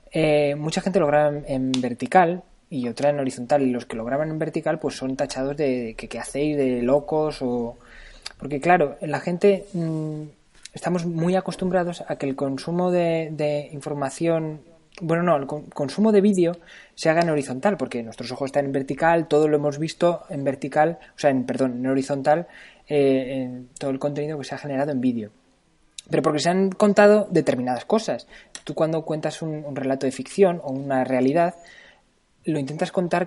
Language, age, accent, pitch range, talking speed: Spanish, 20-39, Spanish, 135-175 Hz, 185 wpm